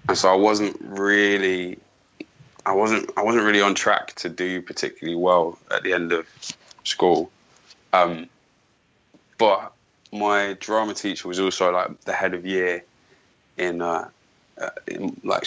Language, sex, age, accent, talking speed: English, male, 20-39, British, 145 wpm